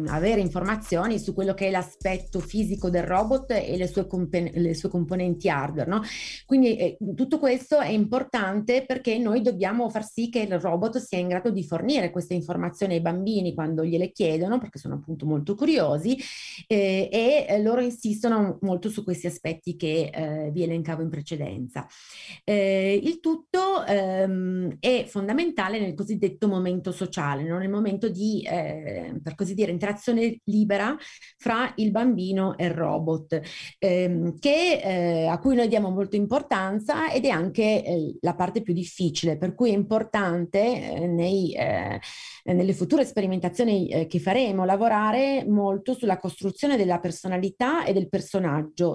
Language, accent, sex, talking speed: Italian, native, female, 160 wpm